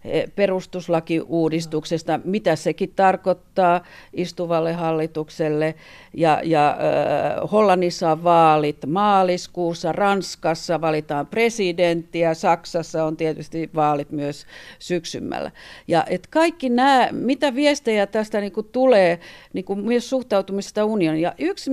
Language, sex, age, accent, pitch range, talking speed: Finnish, female, 50-69, native, 165-265 Hz, 100 wpm